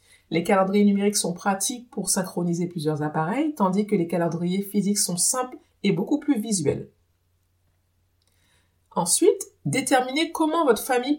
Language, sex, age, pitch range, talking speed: French, female, 50-69, 175-235 Hz, 135 wpm